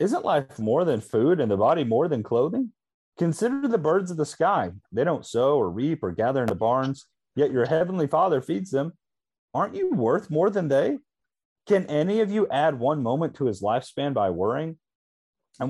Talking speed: 200 wpm